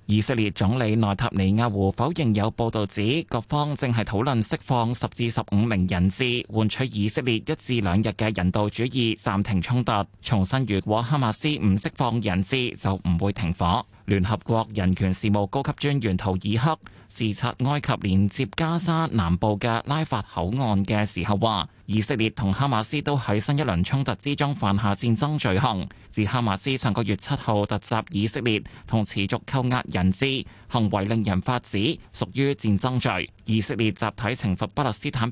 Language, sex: Chinese, male